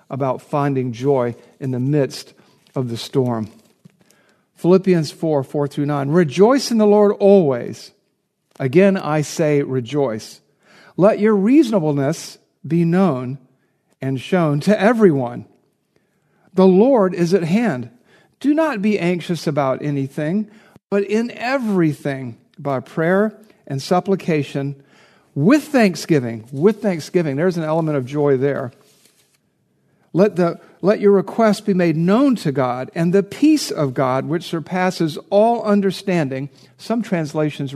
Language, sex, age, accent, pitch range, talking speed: English, male, 50-69, American, 140-205 Hz, 125 wpm